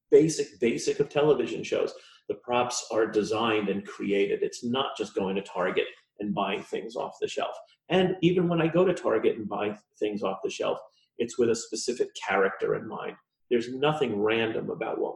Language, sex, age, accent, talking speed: English, male, 40-59, American, 190 wpm